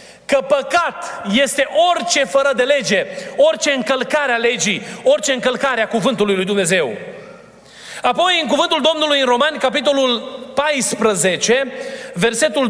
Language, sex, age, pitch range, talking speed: Romanian, male, 30-49, 235-290 Hz, 125 wpm